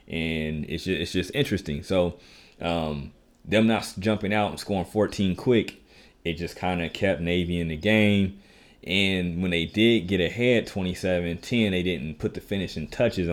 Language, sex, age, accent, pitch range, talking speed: English, male, 30-49, American, 85-110 Hz, 170 wpm